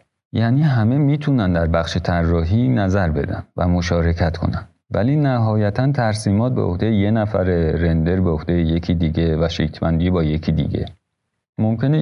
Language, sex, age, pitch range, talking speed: Persian, male, 40-59, 85-115 Hz, 140 wpm